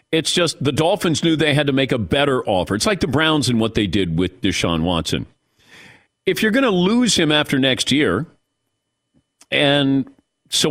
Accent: American